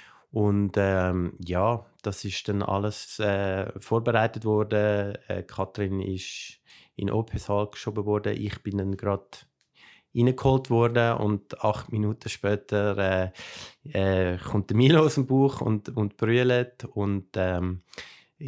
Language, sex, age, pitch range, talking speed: German, male, 20-39, 100-115 Hz, 125 wpm